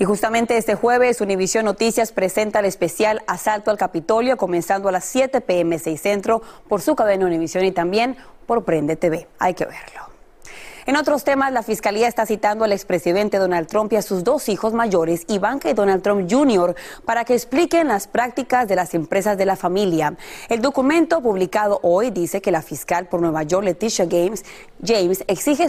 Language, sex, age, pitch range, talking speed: Spanish, female, 30-49, 180-230 Hz, 180 wpm